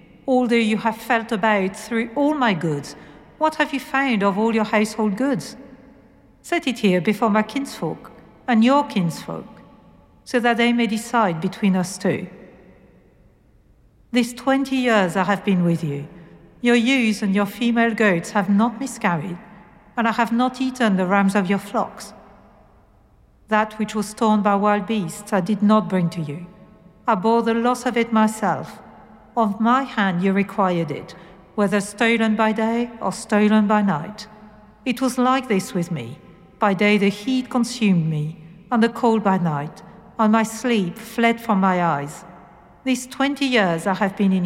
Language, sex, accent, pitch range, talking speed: English, female, French, 190-235 Hz, 170 wpm